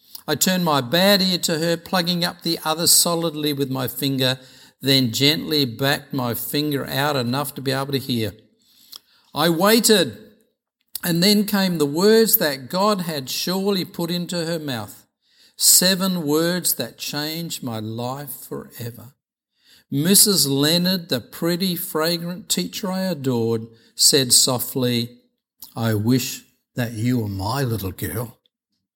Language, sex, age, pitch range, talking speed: English, male, 50-69, 135-205 Hz, 140 wpm